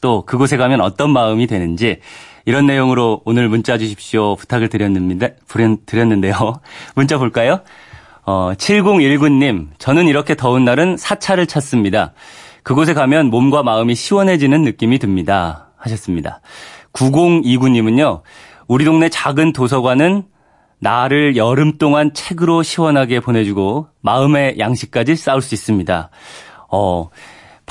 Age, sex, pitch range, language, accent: 30-49, male, 105-145 Hz, Korean, native